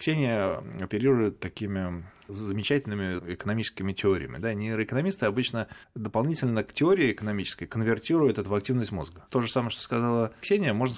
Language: Russian